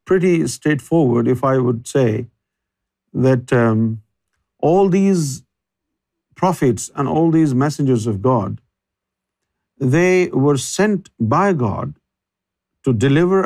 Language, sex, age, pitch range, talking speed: Urdu, male, 50-69, 125-175 Hz, 105 wpm